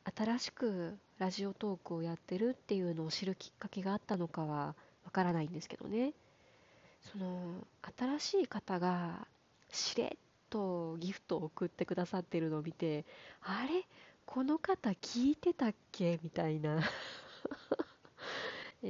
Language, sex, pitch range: Japanese, female, 175-225 Hz